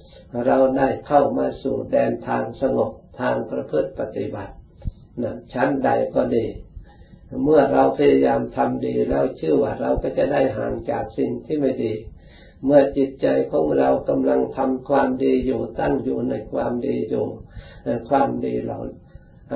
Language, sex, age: Thai, male, 60-79